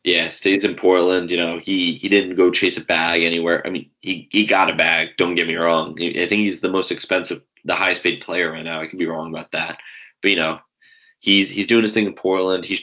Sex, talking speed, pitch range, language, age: male, 255 wpm, 85-105 Hz, English, 20-39